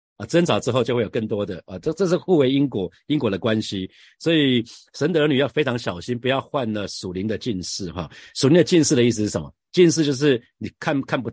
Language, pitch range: Chinese, 105-140 Hz